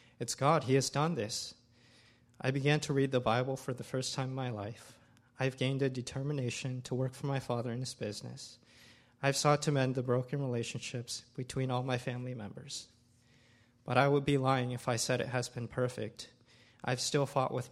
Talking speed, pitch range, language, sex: 200 wpm, 115-130 Hz, English, male